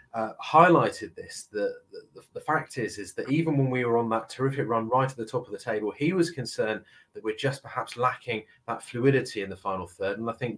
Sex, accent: male, British